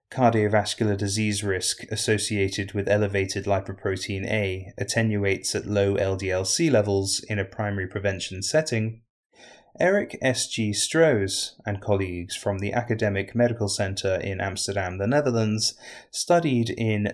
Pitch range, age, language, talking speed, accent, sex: 95-115 Hz, 20-39, English, 125 wpm, British, male